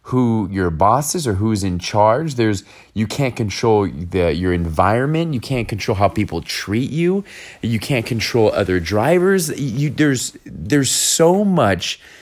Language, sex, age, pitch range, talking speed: English, male, 30-49, 100-135 Hz, 155 wpm